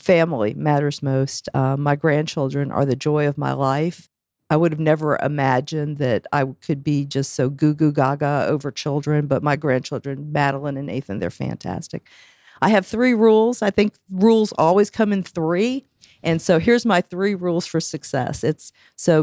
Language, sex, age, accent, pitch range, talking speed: English, female, 50-69, American, 145-180 Hz, 180 wpm